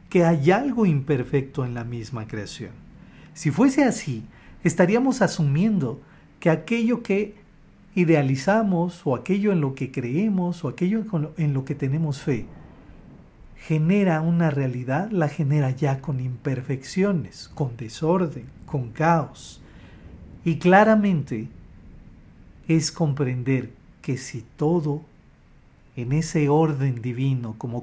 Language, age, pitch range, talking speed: Spanish, 50-69, 125-170 Hz, 115 wpm